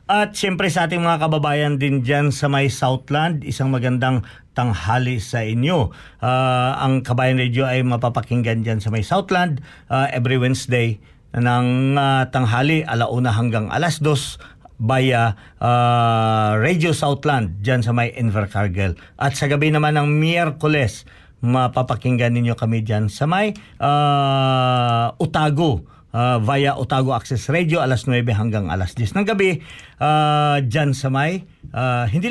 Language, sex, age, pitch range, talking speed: Filipino, male, 50-69, 120-150 Hz, 140 wpm